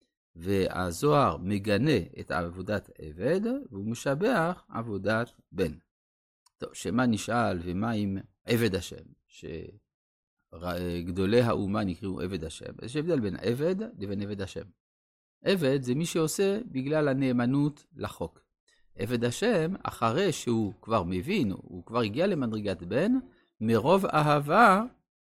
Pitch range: 95-140 Hz